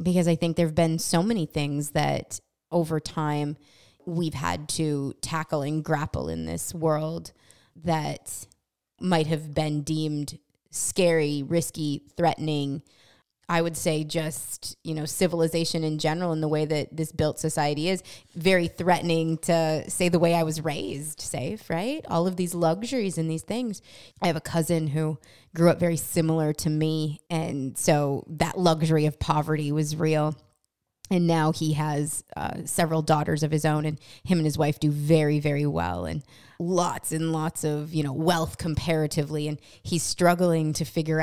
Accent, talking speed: American, 170 wpm